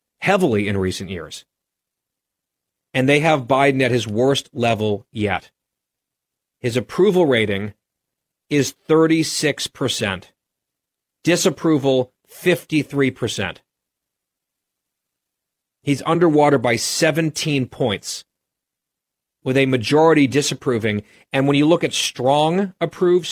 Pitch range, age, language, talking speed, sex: 110-150 Hz, 40-59, English, 95 wpm, male